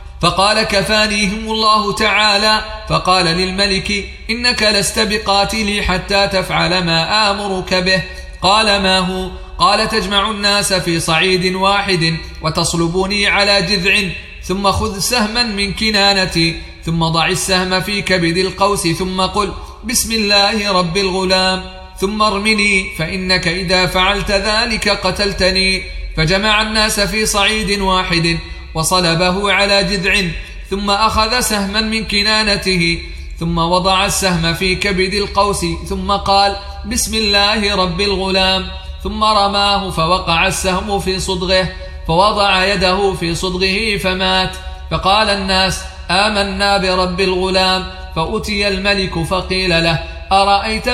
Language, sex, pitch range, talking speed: Arabic, male, 185-205 Hz, 115 wpm